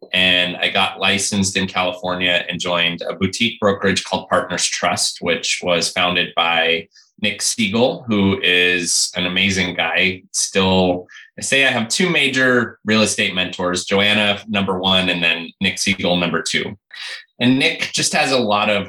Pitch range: 90-105 Hz